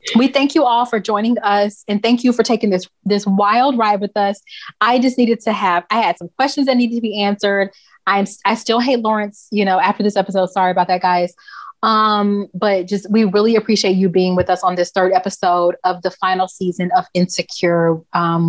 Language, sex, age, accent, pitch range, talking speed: English, female, 30-49, American, 180-210 Hz, 215 wpm